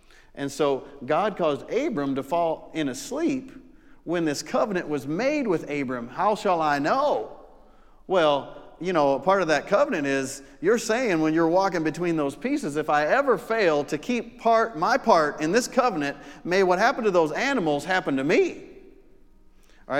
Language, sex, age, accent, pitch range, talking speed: English, male, 40-59, American, 135-205 Hz, 175 wpm